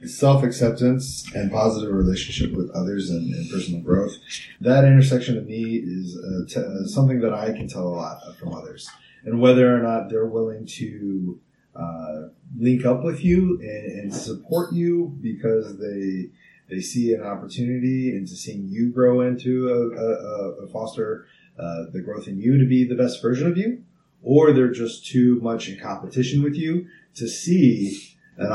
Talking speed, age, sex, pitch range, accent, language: 175 wpm, 30-49, male, 95-130 Hz, American, English